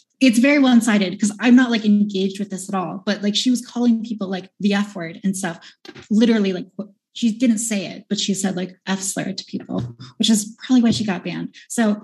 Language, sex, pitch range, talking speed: English, female, 195-230 Hz, 230 wpm